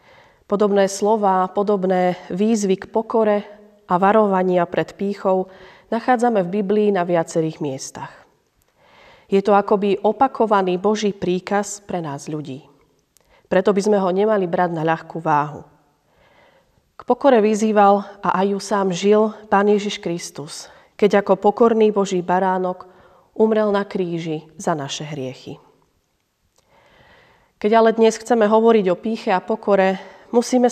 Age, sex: 30-49, female